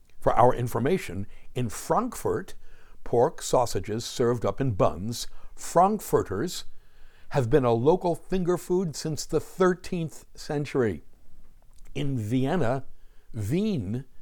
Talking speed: 105 wpm